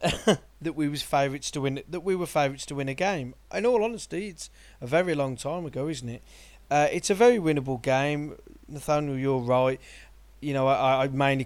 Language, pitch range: English, 120-150 Hz